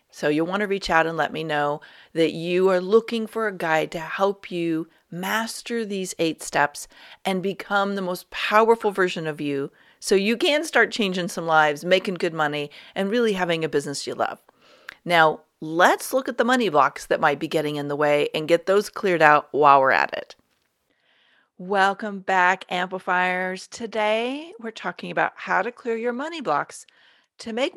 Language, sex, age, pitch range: English, female, 40-59, 175-230 Hz